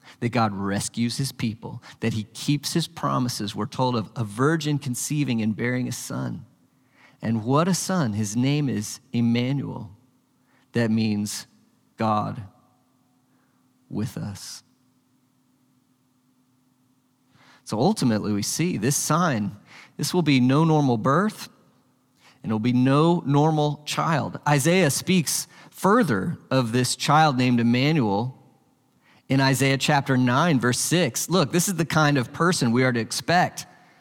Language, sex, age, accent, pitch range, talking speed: English, male, 40-59, American, 125-170 Hz, 135 wpm